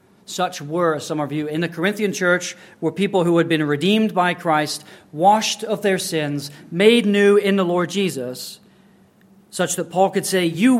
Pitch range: 165-200 Hz